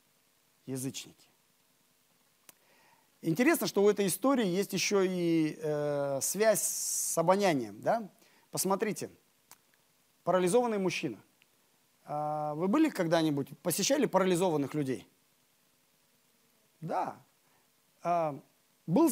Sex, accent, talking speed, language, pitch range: male, native, 75 wpm, Russian, 150-210 Hz